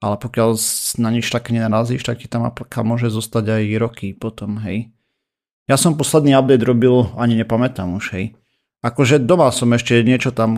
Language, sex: Slovak, male